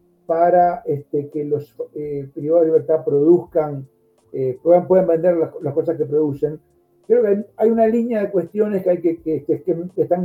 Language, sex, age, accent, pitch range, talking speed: Spanish, male, 60-79, Argentinian, 145-180 Hz, 185 wpm